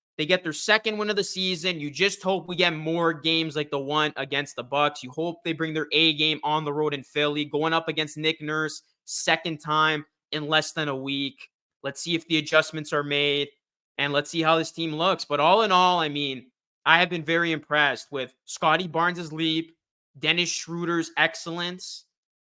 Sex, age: male, 20-39